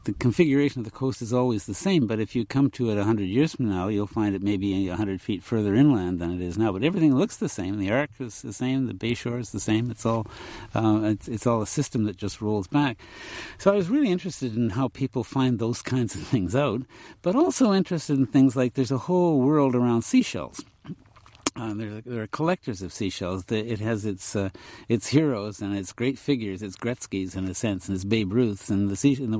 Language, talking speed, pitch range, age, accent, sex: English, 235 wpm, 100-125 Hz, 60-79, American, male